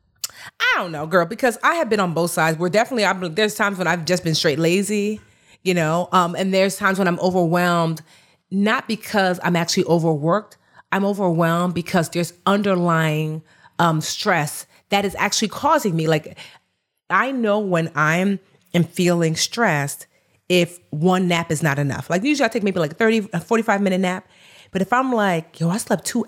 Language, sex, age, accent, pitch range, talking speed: English, female, 30-49, American, 165-205 Hz, 185 wpm